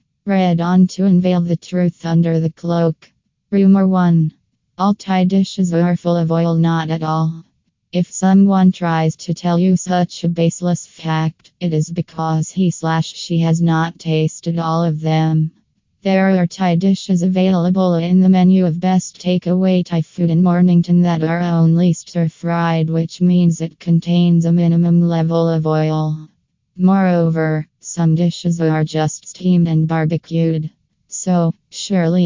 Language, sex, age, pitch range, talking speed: English, female, 20-39, 160-180 Hz, 155 wpm